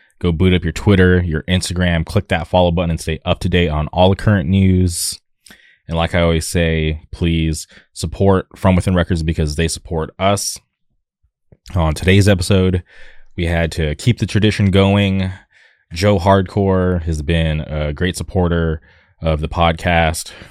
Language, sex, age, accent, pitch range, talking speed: English, male, 20-39, American, 80-90 Hz, 160 wpm